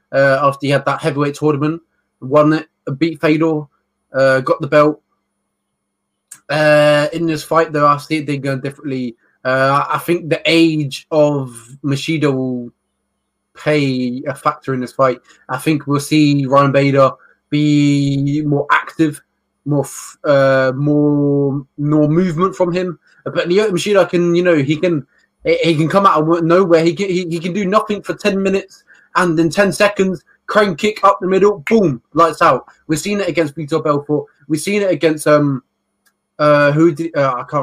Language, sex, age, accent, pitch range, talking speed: English, male, 20-39, British, 140-165 Hz, 175 wpm